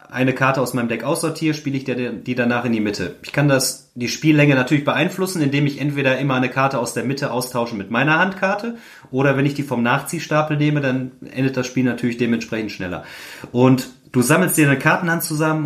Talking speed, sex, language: 205 wpm, male, German